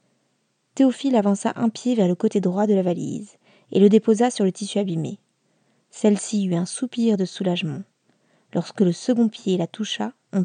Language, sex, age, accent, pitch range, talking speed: French, female, 20-39, French, 185-220 Hz, 180 wpm